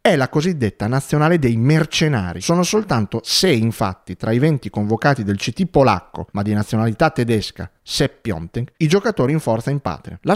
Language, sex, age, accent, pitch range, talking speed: Italian, male, 30-49, native, 115-165 Hz, 170 wpm